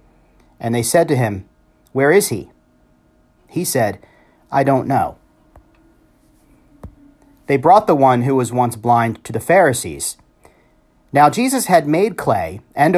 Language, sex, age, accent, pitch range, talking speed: English, male, 40-59, American, 85-140 Hz, 140 wpm